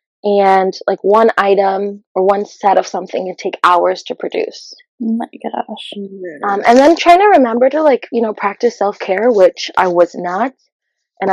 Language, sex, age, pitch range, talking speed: English, female, 20-39, 195-265 Hz, 175 wpm